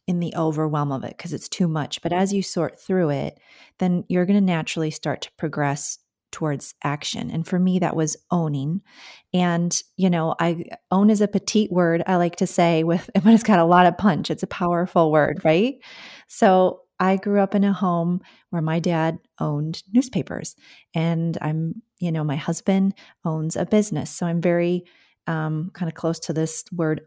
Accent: American